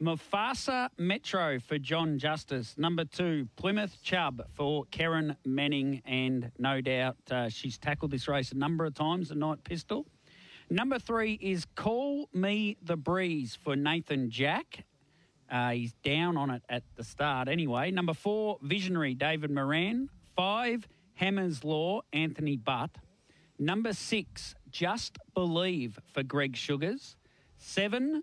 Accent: Australian